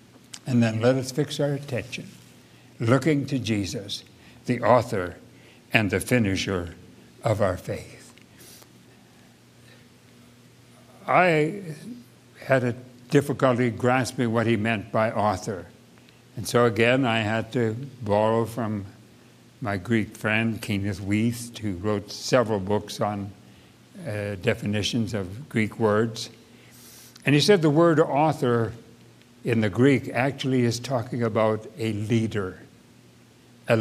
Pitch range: 105-125 Hz